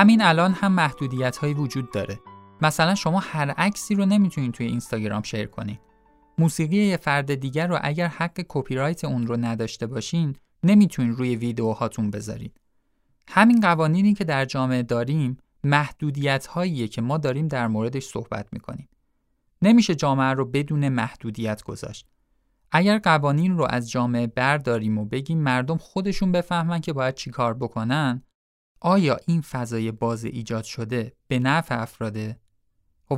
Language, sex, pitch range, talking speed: Persian, male, 115-165 Hz, 140 wpm